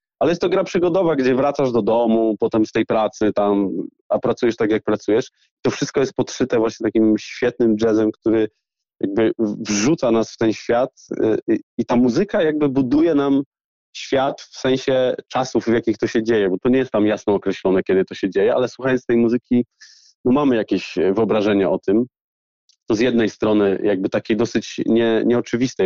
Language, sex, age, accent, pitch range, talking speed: Polish, male, 20-39, native, 105-125 Hz, 185 wpm